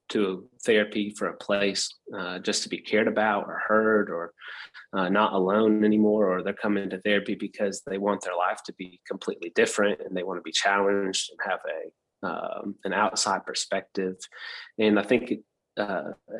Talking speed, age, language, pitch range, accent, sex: 180 wpm, 30-49, English, 95-115 Hz, American, male